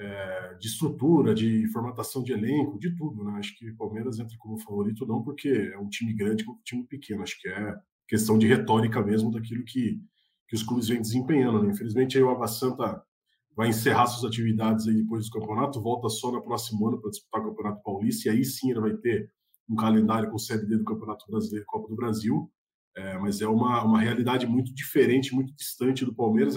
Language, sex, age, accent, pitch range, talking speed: Portuguese, male, 20-39, Brazilian, 110-130 Hz, 210 wpm